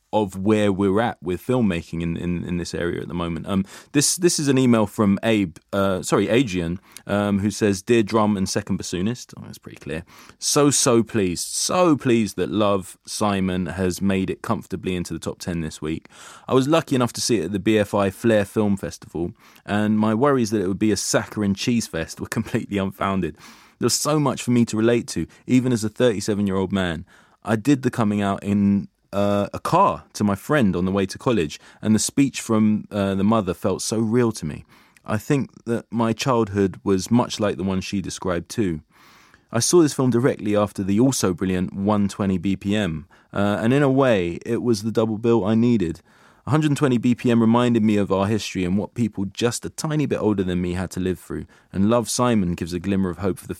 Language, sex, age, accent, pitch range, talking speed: English, male, 20-39, British, 95-115 Hz, 215 wpm